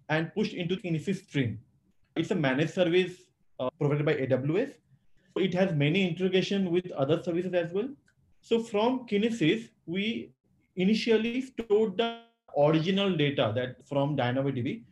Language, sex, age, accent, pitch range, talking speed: English, male, 30-49, Indian, 145-190 Hz, 140 wpm